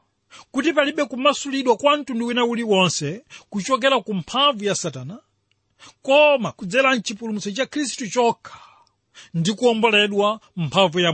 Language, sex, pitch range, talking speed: English, male, 155-250 Hz, 95 wpm